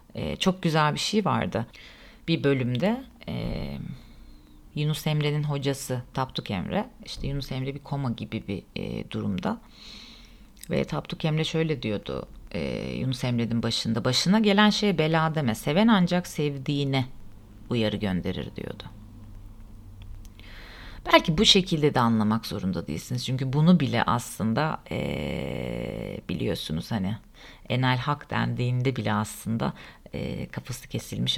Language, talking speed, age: Turkish, 120 wpm, 40-59